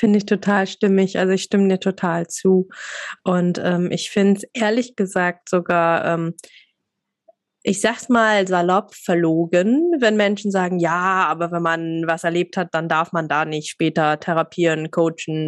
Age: 20-39